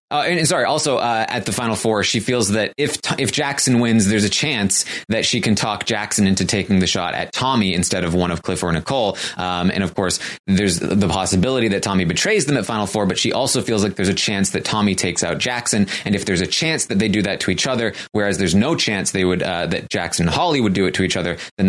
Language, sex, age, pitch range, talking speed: English, male, 20-39, 95-125 Hz, 265 wpm